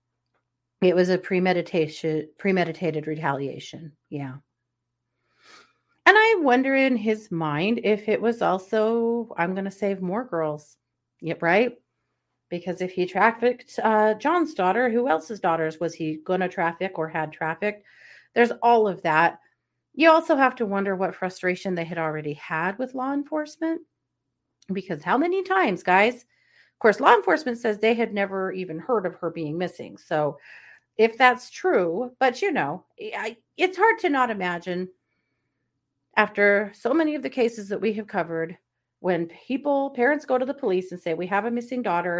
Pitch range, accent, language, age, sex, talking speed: 165-245 Hz, American, English, 30-49, female, 165 wpm